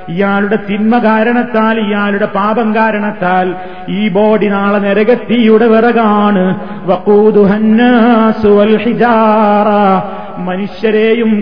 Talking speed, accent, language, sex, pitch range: 65 wpm, native, Malayalam, male, 205-230 Hz